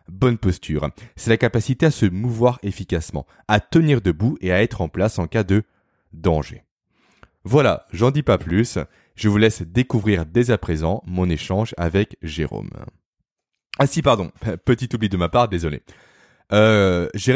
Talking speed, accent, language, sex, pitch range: 165 wpm, French, French, male, 90-125 Hz